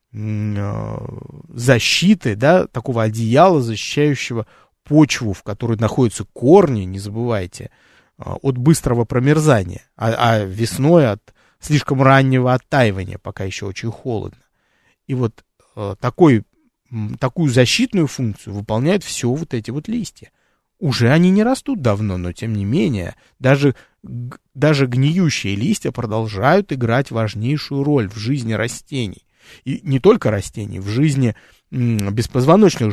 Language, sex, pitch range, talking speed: Russian, male, 110-145 Hz, 115 wpm